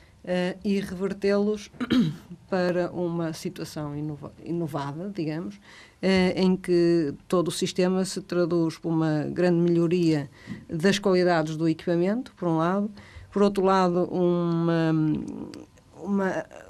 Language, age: Portuguese, 50-69